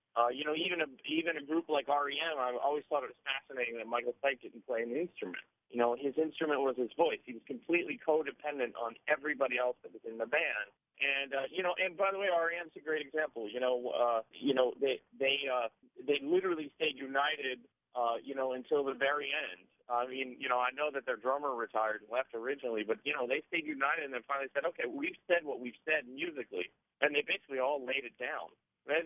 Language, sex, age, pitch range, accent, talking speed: English, male, 40-59, 120-155 Hz, American, 230 wpm